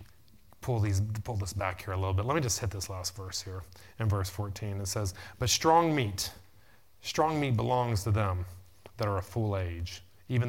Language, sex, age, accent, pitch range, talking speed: English, male, 30-49, American, 95-110 Hz, 200 wpm